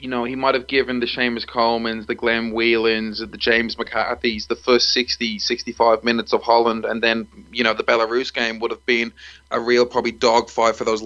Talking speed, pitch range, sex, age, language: 205 wpm, 115-125 Hz, male, 20-39, English